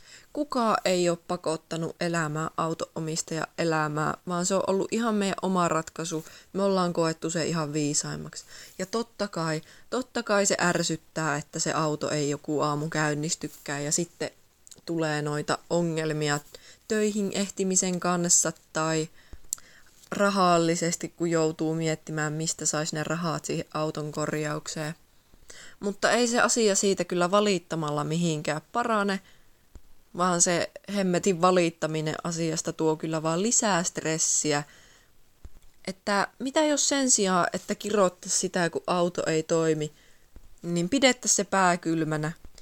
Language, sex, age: Finnish, female, 20-39